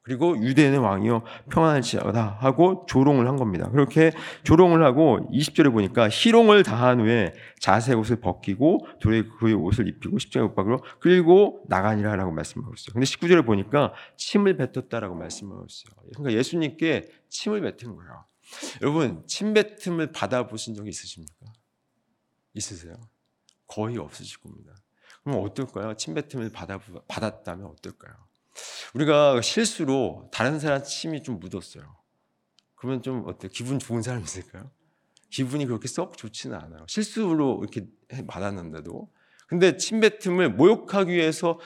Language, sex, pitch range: Korean, male, 105-155 Hz